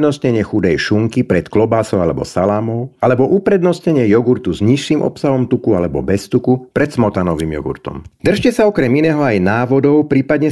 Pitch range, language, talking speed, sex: 100-140 Hz, Slovak, 150 wpm, male